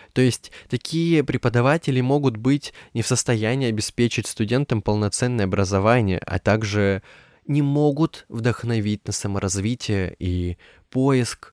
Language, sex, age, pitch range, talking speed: Russian, male, 20-39, 100-130 Hz, 115 wpm